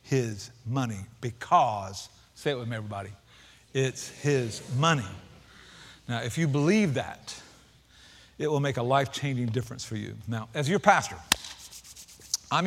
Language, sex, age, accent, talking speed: English, male, 50-69, American, 135 wpm